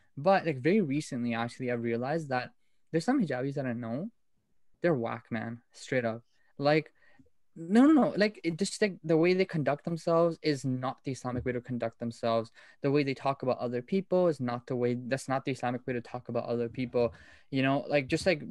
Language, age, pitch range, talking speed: English, 20-39, 125-160 Hz, 210 wpm